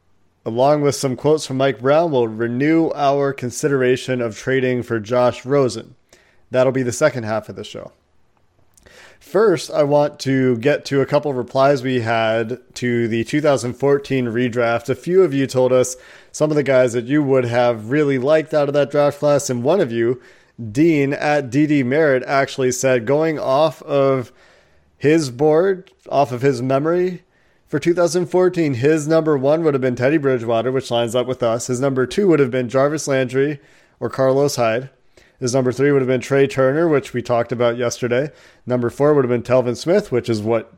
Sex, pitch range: male, 120-145 Hz